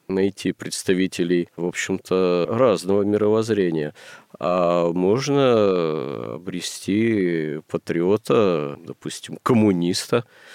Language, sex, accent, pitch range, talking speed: Russian, male, native, 85-100 Hz, 70 wpm